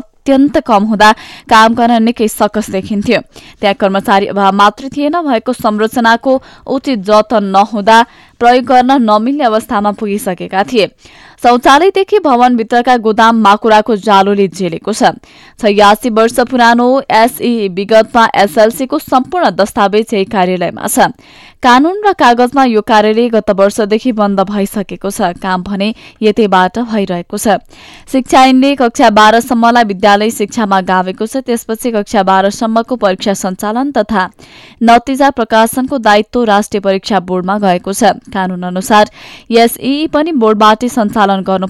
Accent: Indian